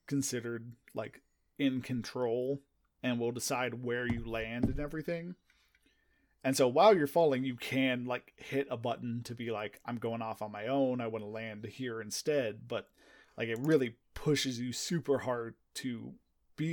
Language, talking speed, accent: English, 170 wpm, American